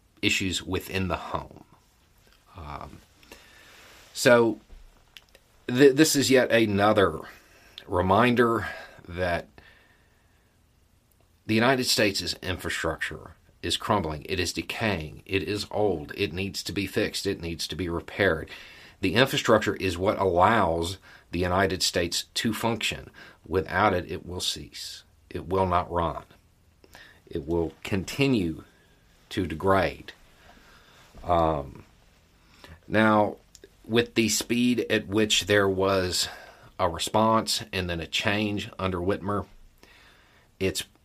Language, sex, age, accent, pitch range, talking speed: English, male, 40-59, American, 85-110 Hz, 115 wpm